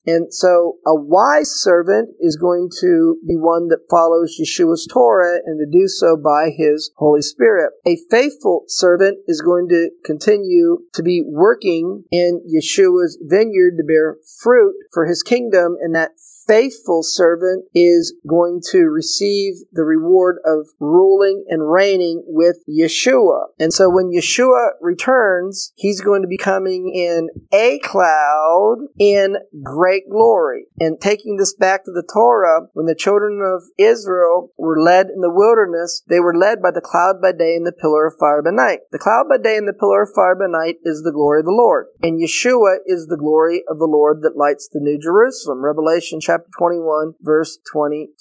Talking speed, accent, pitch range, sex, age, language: 175 wpm, American, 165-205 Hz, male, 40-59, English